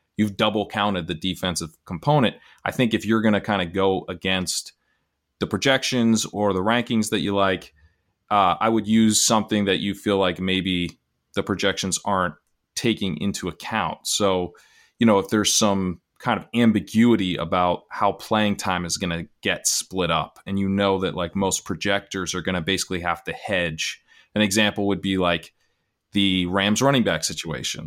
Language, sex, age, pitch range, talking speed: English, male, 30-49, 85-100 Hz, 180 wpm